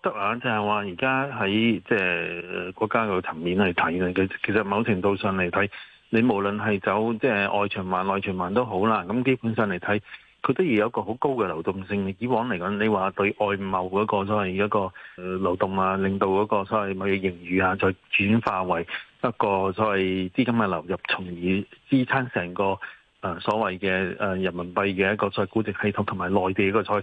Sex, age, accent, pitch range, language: male, 30-49, native, 95-110 Hz, Chinese